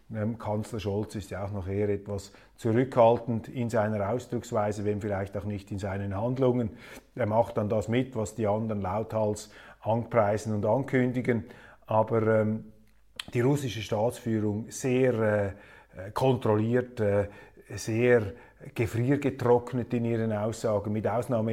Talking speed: 130 wpm